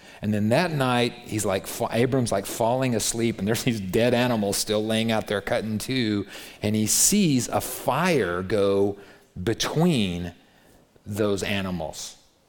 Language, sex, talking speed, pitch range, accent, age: English, male, 150 wpm, 105-150 Hz, American, 40-59